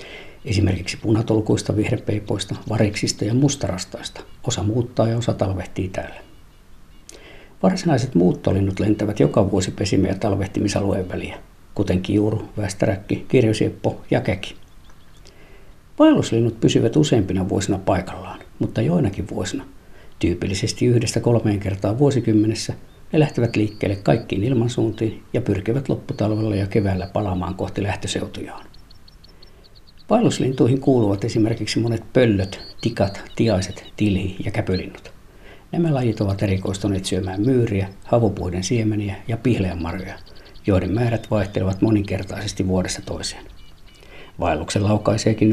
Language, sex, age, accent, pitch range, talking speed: Finnish, male, 60-79, native, 95-115 Hz, 105 wpm